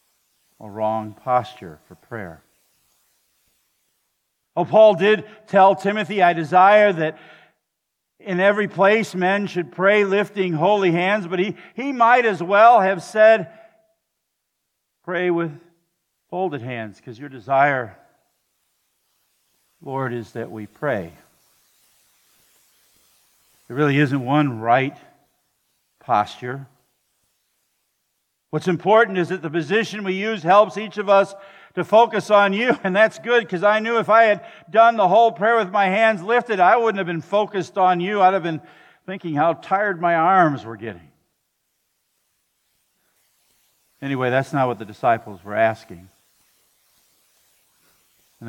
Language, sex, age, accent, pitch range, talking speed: English, male, 50-69, American, 150-210 Hz, 130 wpm